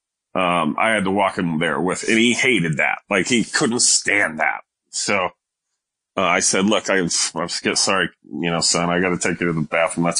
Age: 30-49